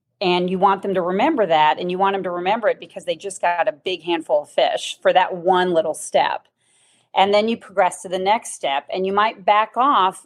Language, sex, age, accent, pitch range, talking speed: English, female, 40-59, American, 175-210 Hz, 240 wpm